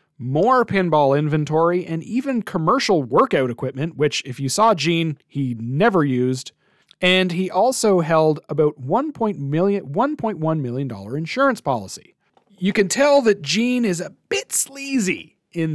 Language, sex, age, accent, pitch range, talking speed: English, male, 40-59, American, 130-185 Hz, 135 wpm